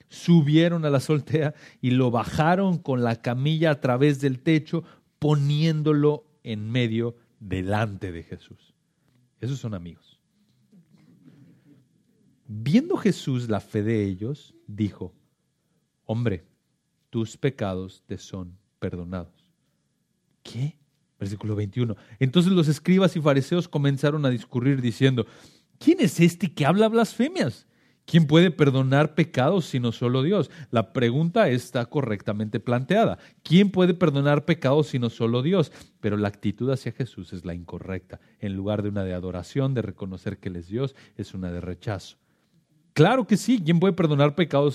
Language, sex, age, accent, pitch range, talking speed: Spanish, male, 40-59, Mexican, 110-160 Hz, 140 wpm